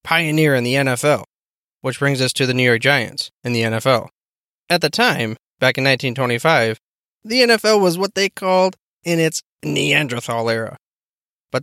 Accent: American